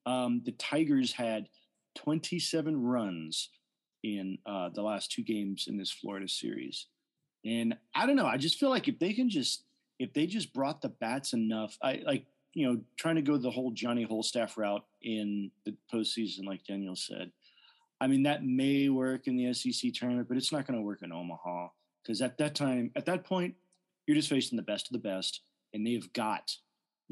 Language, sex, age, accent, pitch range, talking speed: English, male, 30-49, American, 105-135 Hz, 195 wpm